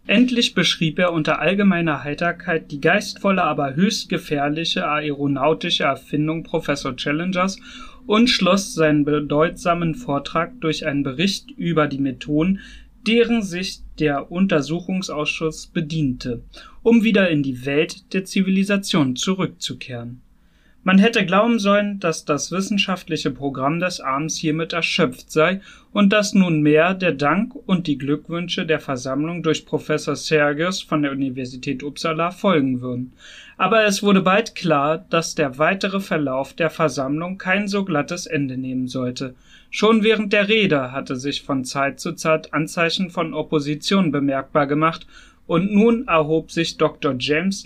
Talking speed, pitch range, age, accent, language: 135 wpm, 145-190 Hz, 30-49, German, German